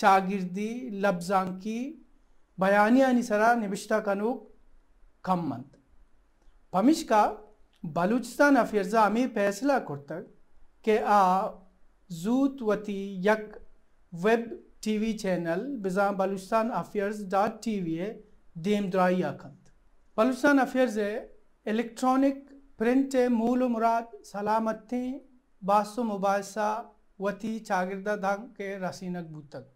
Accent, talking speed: Indian, 75 wpm